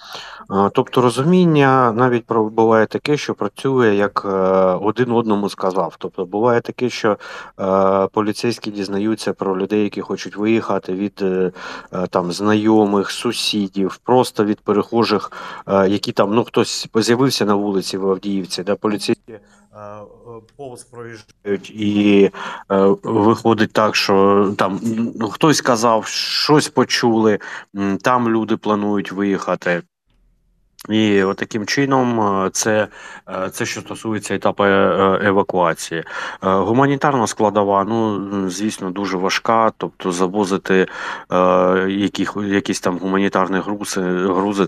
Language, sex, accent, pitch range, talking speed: Ukrainian, male, native, 95-110 Hz, 105 wpm